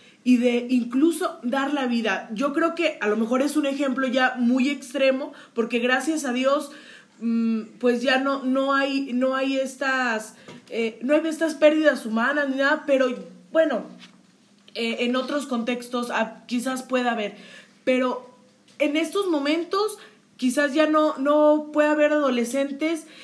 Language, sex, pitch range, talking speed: Spanish, female, 240-300 Hz, 150 wpm